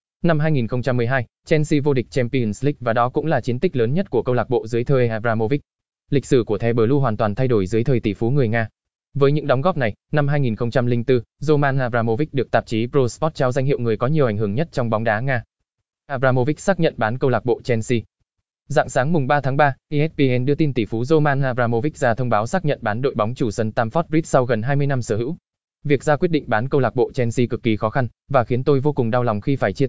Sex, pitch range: male, 115-145 Hz